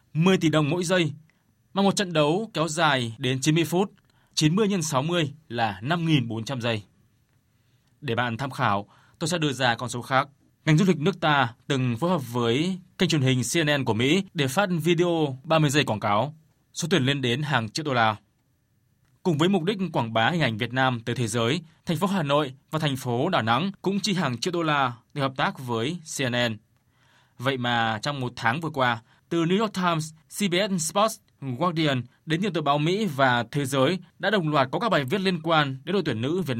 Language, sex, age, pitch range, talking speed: Vietnamese, male, 20-39, 120-165 Hz, 215 wpm